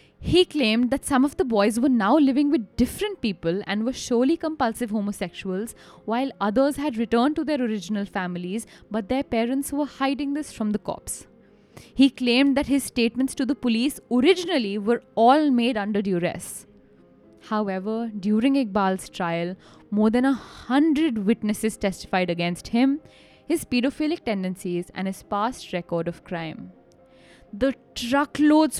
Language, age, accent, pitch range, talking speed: English, 10-29, Indian, 190-270 Hz, 150 wpm